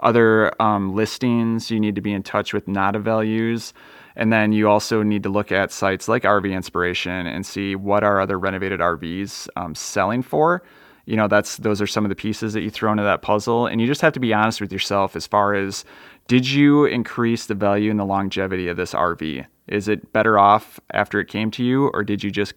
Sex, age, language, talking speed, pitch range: male, 30-49, English, 225 wpm, 100-110 Hz